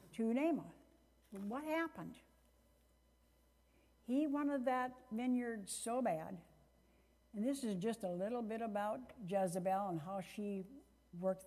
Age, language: 60-79, English